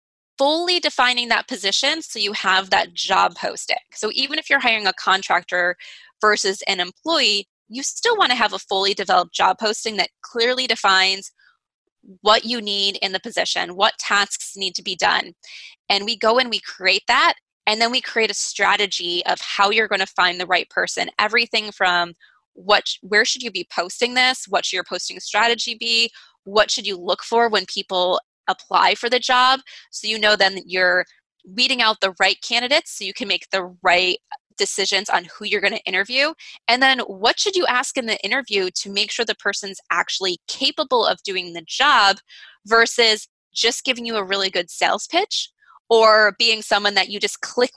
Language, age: English, 20-39